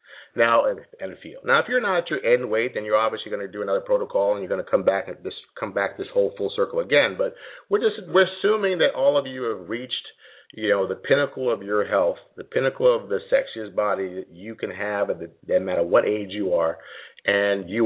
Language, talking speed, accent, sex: English, 240 wpm, American, male